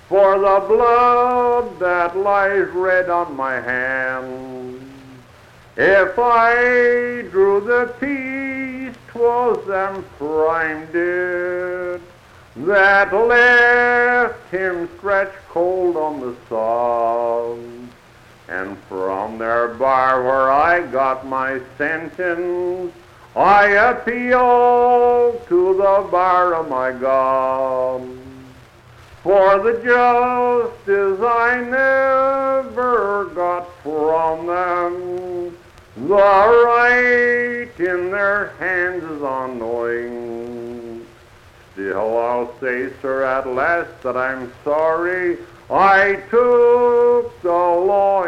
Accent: American